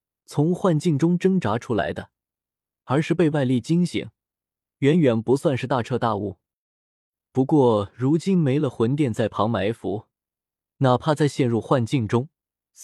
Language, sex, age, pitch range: Chinese, male, 20-39, 115-170 Hz